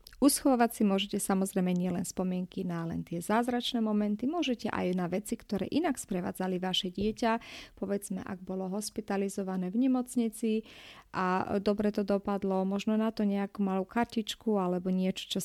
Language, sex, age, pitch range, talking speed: Slovak, female, 30-49, 190-230 Hz, 150 wpm